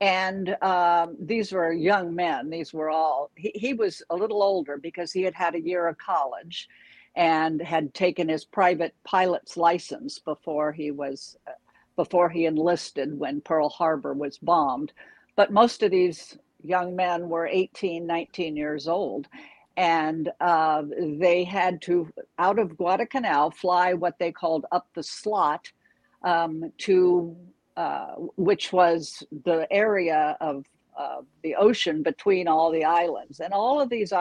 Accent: American